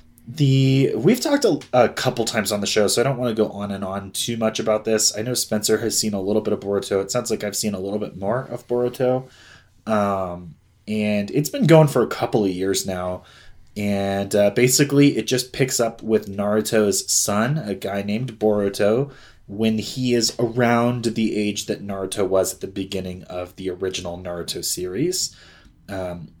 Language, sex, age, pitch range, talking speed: English, male, 20-39, 100-125 Hz, 200 wpm